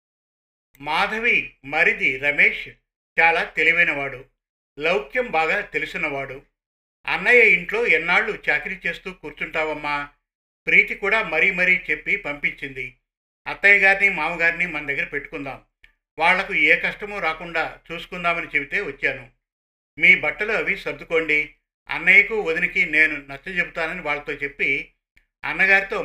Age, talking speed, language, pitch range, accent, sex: 50-69, 105 wpm, Telugu, 145-180 Hz, native, male